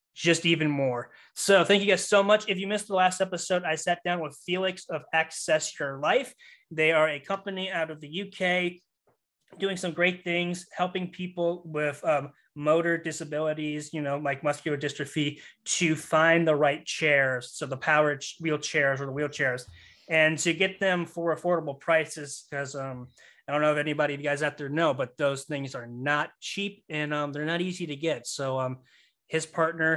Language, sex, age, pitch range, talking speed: English, male, 20-39, 145-180 Hz, 190 wpm